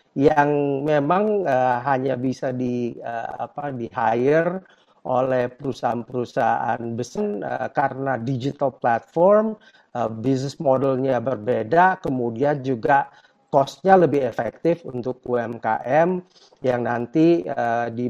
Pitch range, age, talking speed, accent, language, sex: 125-175 Hz, 50-69, 105 wpm, native, Indonesian, male